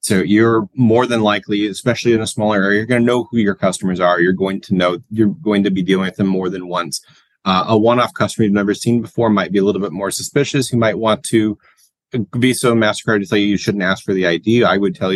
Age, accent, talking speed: 30-49, American, 260 wpm